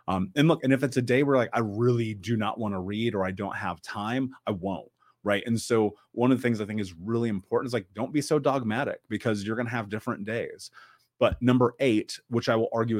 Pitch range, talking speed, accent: 100-120 Hz, 260 wpm, American